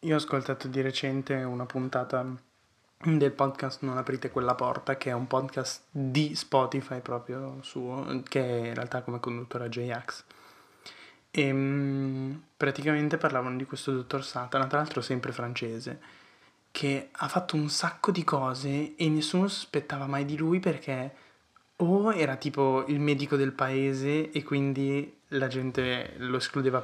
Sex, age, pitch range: male, 20-39, 130-150 Hz